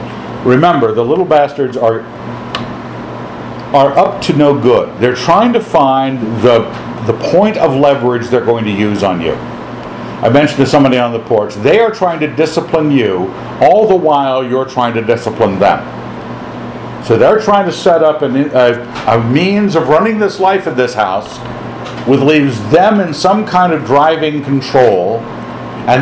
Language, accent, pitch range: English, American, 120-160 Hz